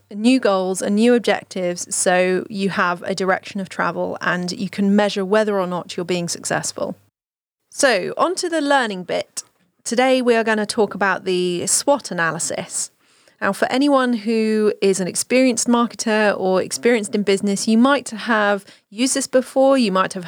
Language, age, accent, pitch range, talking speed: English, 30-49, British, 185-230 Hz, 175 wpm